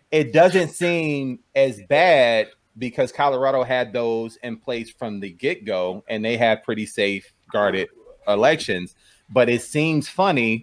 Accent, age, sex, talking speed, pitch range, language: American, 30-49, male, 140 wpm, 105-135 Hz, English